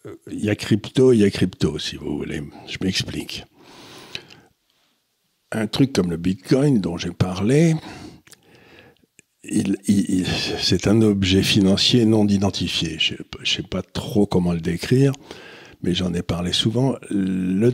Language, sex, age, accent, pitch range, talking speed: French, male, 60-79, French, 90-130 Hz, 140 wpm